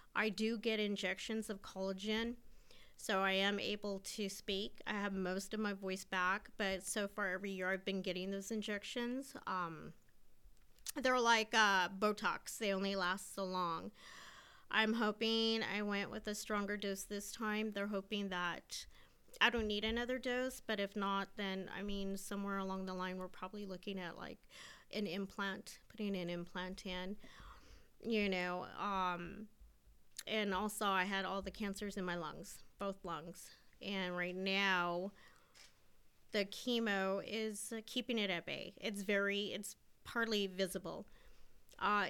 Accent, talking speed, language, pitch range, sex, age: American, 155 wpm, English, 190-215 Hz, female, 30-49